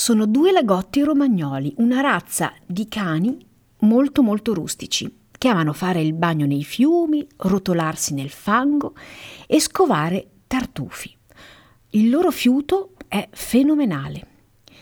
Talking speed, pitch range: 115 wpm, 175-270 Hz